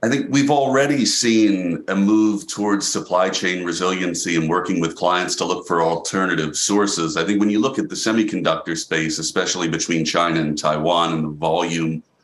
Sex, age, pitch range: male, 40-59, 90-105 Hz